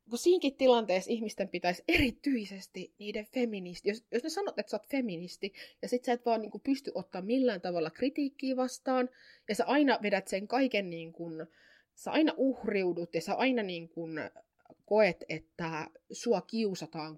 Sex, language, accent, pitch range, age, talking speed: female, Finnish, native, 175-245 Hz, 20-39, 170 wpm